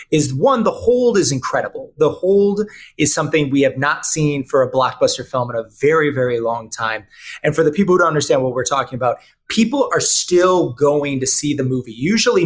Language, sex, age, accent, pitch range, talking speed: English, male, 30-49, American, 130-175 Hz, 210 wpm